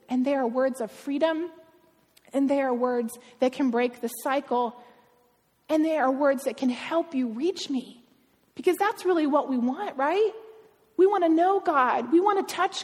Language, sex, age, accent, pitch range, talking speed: English, female, 30-49, American, 245-320 Hz, 190 wpm